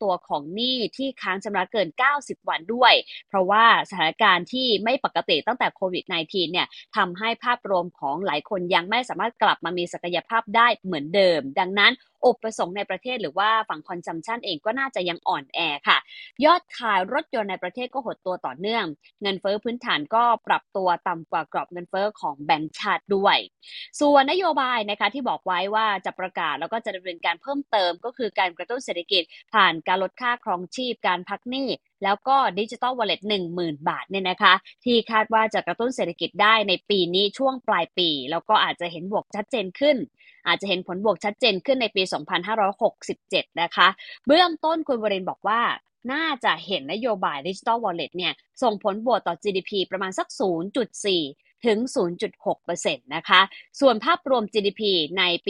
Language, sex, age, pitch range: Thai, female, 20-39, 180-240 Hz